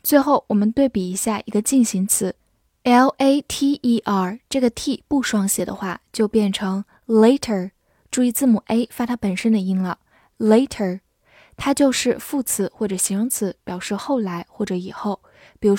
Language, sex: Chinese, female